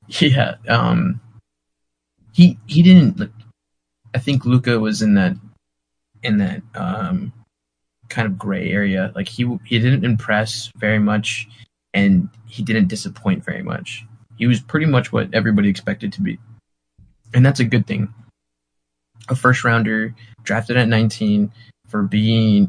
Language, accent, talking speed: English, American, 145 wpm